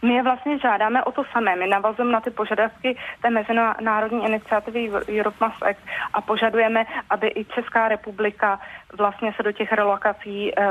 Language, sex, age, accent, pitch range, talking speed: Czech, female, 30-49, native, 195-215 Hz, 165 wpm